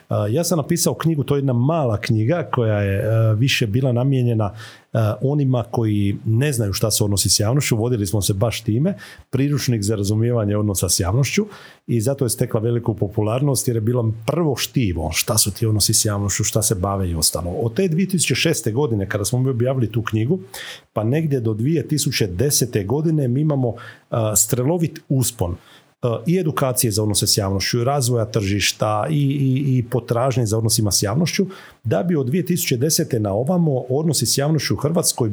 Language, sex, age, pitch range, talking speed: Croatian, male, 40-59, 110-140 Hz, 175 wpm